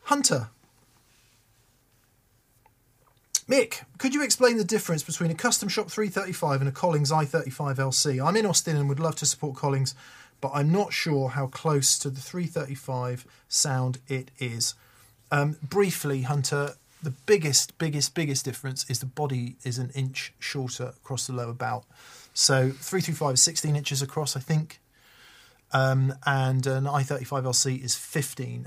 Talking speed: 145 wpm